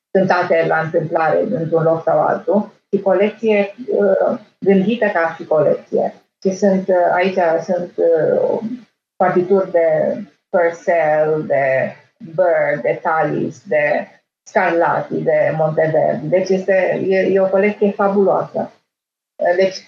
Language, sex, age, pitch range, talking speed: Romanian, female, 30-49, 175-210 Hz, 105 wpm